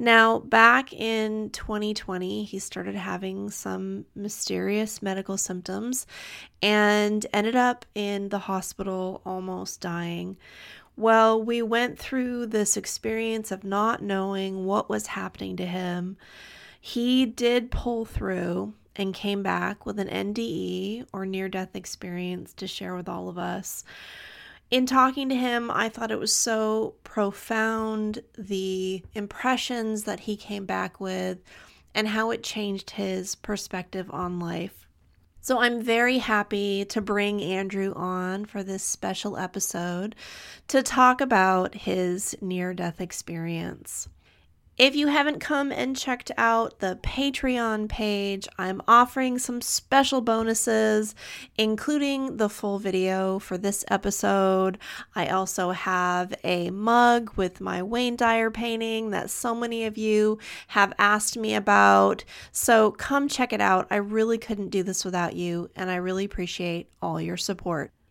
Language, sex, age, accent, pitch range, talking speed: English, female, 30-49, American, 185-225 Hz, 135 wpm